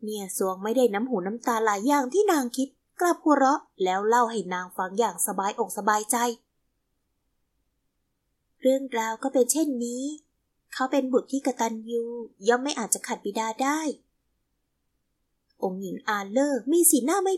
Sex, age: female, 20-39